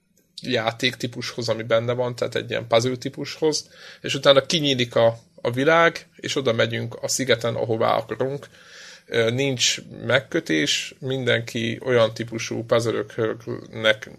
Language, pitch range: Hungarian, 115-135 Hz